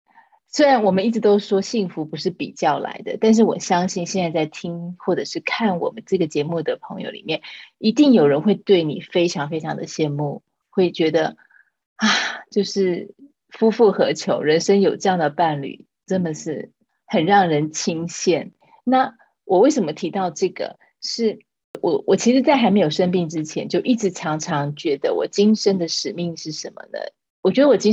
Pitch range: 165-220 Hz